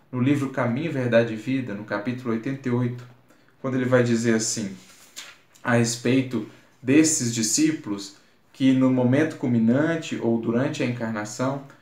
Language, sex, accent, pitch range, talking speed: Portuguese, male, Brazilian, 115-150 Hz, 130 wpm